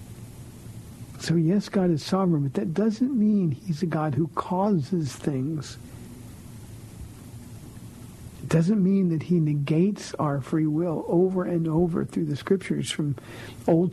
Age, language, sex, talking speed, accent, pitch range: 60-79, English, male, 140 wpm, American, 120-170 Hz